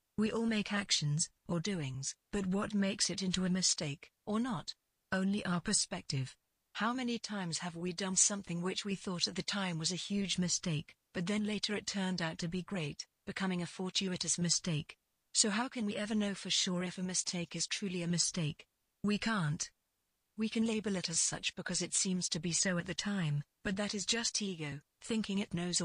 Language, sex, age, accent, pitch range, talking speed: English, female, 40-59, British, 175-205 Hz, 205 wpm